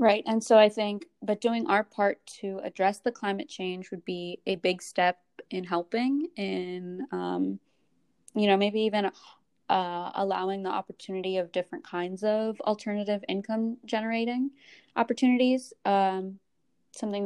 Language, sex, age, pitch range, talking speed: English, female, 20-39, 195-235 Hz, 145 wpm